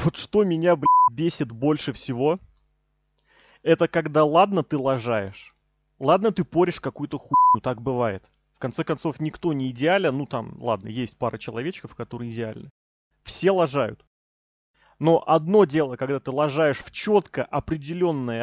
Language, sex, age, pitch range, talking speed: Russian, male, 30-49, 130-175 Hz, 145 wpm